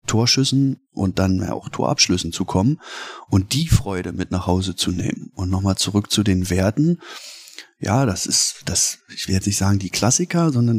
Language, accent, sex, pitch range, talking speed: German, German, male, 95-120 Hz, 185 wpm